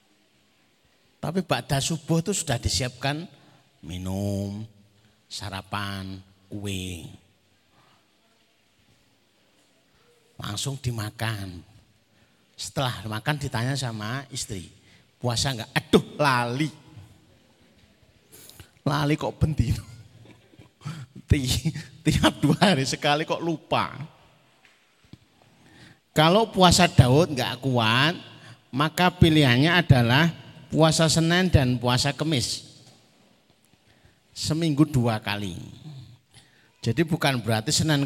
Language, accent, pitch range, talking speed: Indonesian, native, 115-160 Hz, 75 wpm